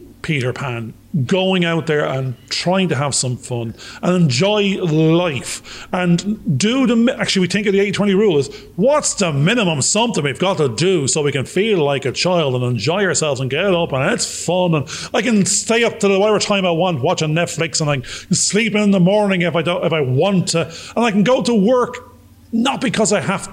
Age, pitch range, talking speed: 30-49, 155-205 Hz, 220 wpm